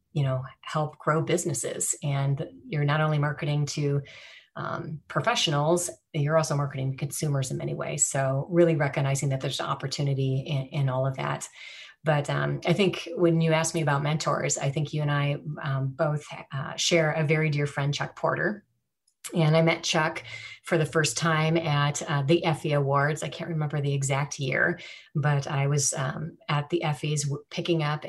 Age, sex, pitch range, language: 30-49, female, 140-165 Hz, English